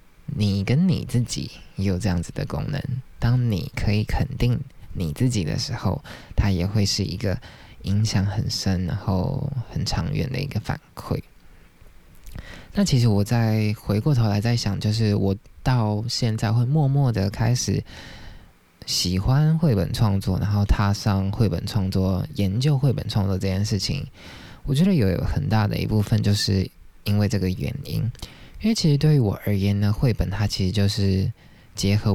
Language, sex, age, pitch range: Chinese, male, 20-39, 100-130 Hz